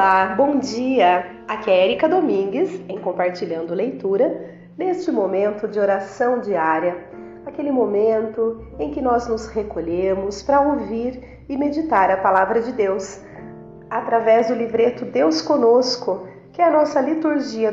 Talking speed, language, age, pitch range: 135 wpm, Portuguese, 40-59, 190-280 Hz